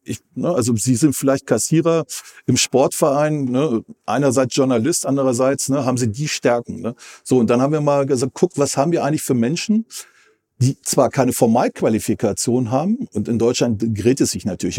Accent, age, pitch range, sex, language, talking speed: German, 40-59, 125-150 Hz, male, German, 160 wpm